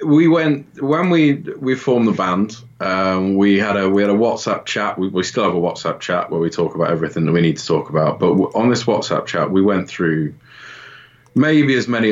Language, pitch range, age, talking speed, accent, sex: English, 85-105 Hz, 20-39, 230 wpm, British, male